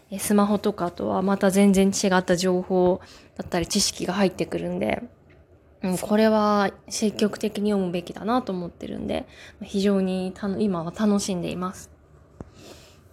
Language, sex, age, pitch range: Japanese, female, 20-39, 180-220 Hz